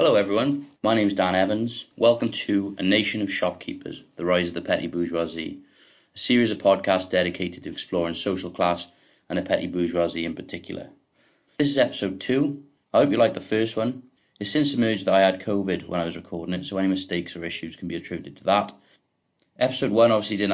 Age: 30-49